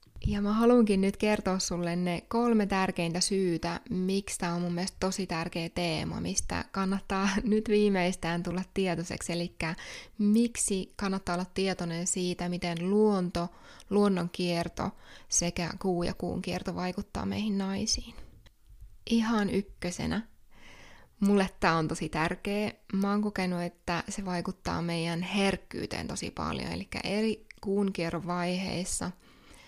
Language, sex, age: English, female, 20-39